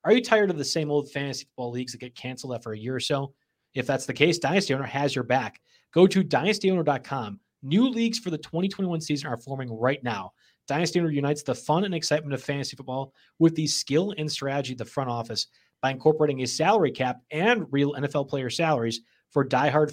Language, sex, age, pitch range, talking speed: English, male, 30-49, 120-150 Hz, 215 wpm